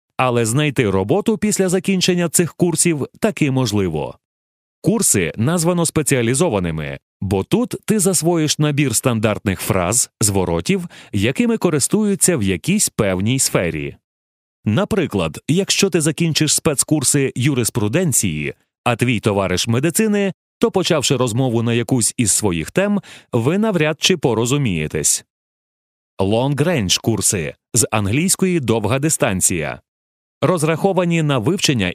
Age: 30-49